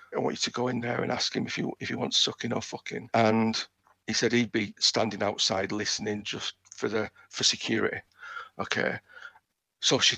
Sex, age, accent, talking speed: male, 50-69, British, 200 wpm